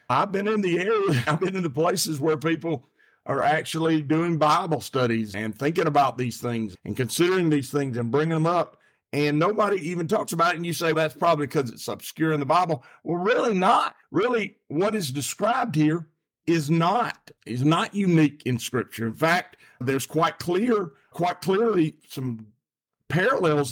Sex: male